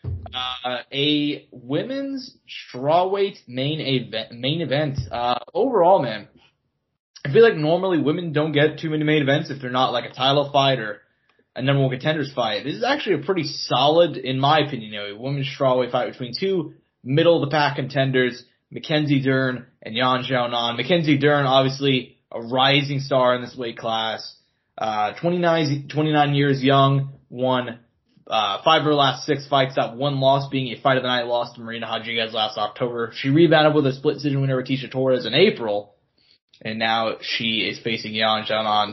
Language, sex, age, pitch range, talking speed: English, male, 20-39, 120-150 Hz, 180 wpm